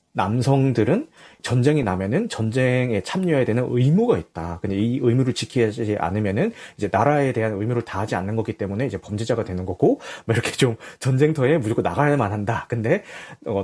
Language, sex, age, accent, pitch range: Korean, male, 30-49, native, 105-145 Hz